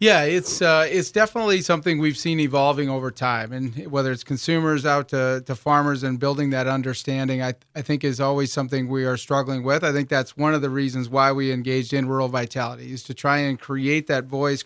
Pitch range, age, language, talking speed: 130-150 Hz, 30-49, English, 220 wpm